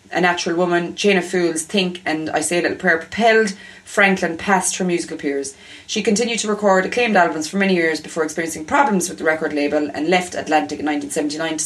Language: English